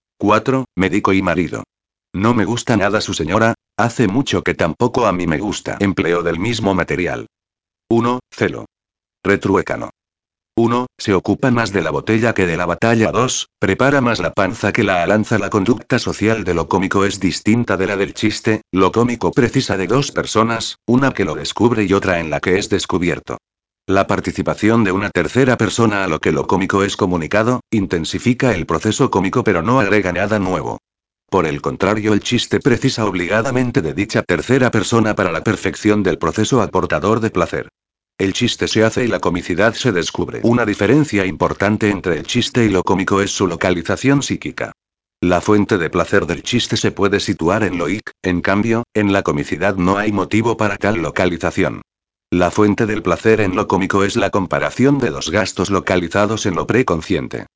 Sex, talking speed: male, 185 wpm